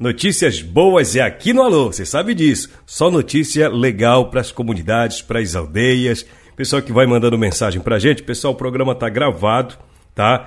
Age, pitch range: 60-79, 115-150 Hz